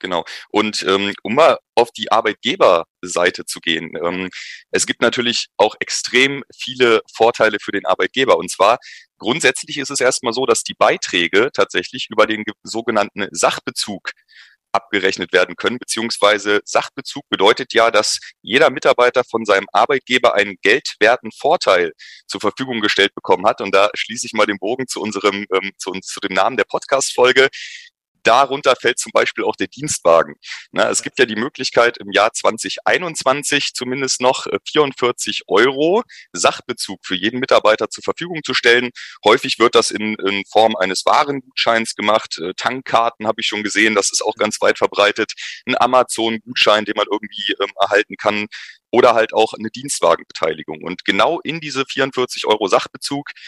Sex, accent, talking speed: male, German, 155 wpm